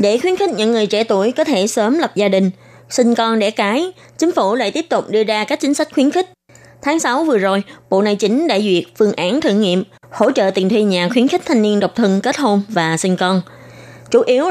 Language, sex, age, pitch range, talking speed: Vietnamese, female, 20-39, 180-240 Hz, 250 wpm